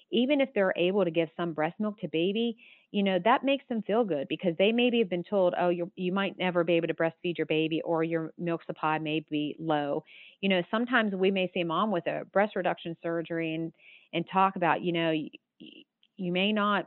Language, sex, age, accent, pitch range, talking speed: English, female, 40-59, American, 160-190 Hz, 225 wpm